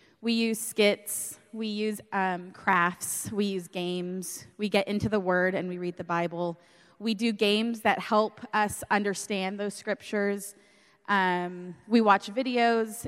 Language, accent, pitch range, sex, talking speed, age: English, American, 185-220 Hz, female, 150 wpm, 20-39